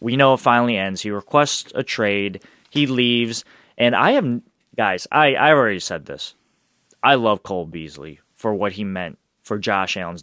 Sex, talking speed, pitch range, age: male, 180 wpm, 100-125 Hz, 20-39